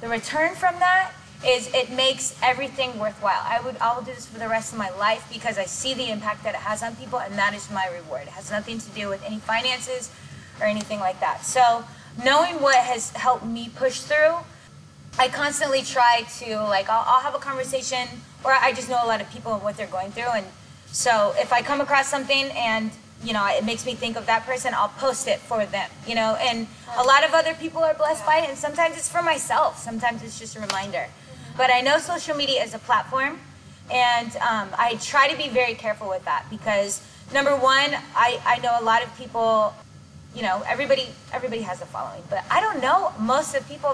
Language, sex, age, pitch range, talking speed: English, female, 20-39, 225-275 Hz, 225 wpm